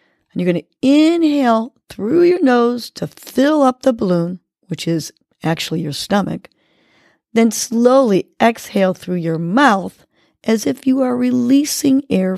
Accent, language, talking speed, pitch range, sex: American, English, 135 wpm, 170-255 Hz, female